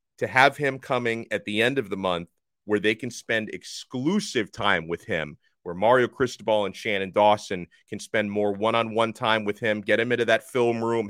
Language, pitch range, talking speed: English, 115-135 Hz, 200 wpm